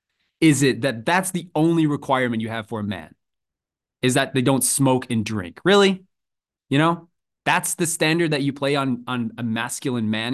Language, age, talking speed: English, 20-39, 190 wpm